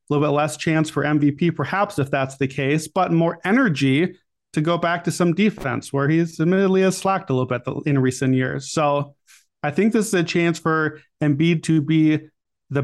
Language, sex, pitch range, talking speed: English, male, 145-175 Hz, 205 wpm